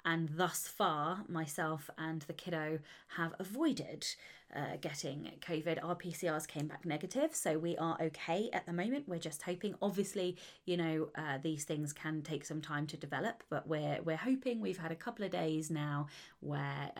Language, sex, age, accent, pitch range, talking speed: English, female, 20-39, British, 160-205 Hz, 180 wpm